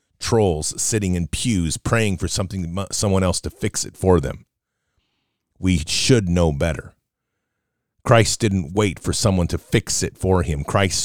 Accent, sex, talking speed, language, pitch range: American, male, 160 wpm, English, 90-110 Hz